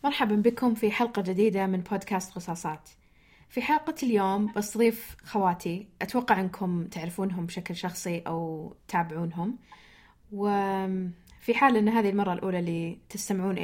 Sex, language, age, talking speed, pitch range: female, Arabic, 20-39, 125 wpm, 180-220 Hz